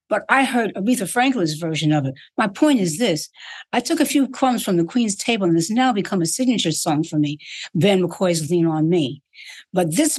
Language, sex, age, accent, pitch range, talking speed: English, female, 60-79, American, 180-270 Hz, 220 wpm